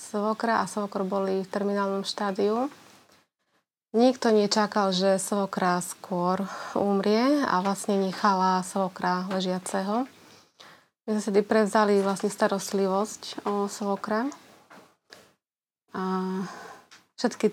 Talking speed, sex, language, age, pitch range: 95 wpm, female, Slovak, 30-49, 190-215 Hz